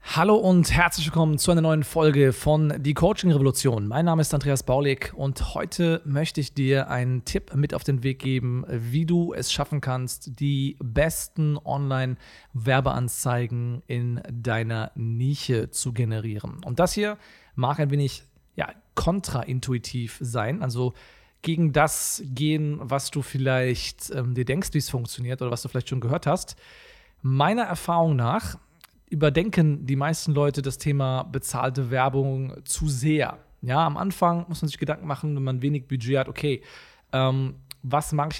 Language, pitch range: German, 130-155 Hz